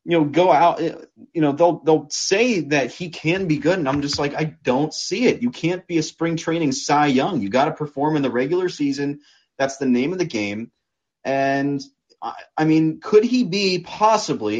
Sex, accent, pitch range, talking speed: male, American, 125-165 Hz, 215 wpm